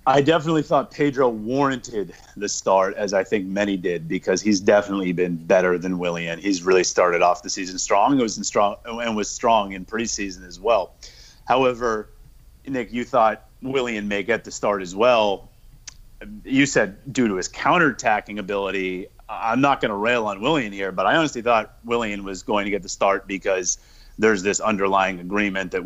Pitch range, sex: 95-115 Hz, male